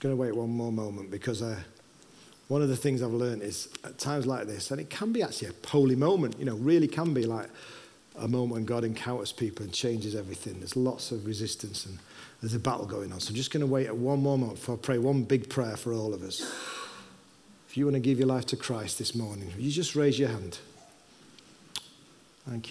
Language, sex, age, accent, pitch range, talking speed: English, male, 40-59, British, 115-135 Hz, 235 wpm